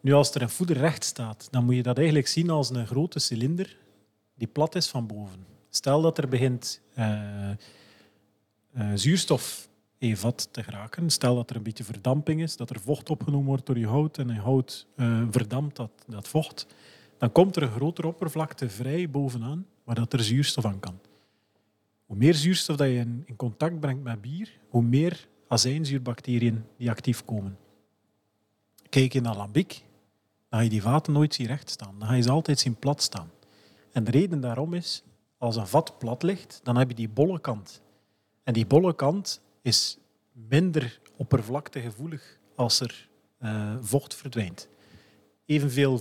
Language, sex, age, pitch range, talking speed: Dutch, male, 40-59, 110-145 Hz, 175 wpm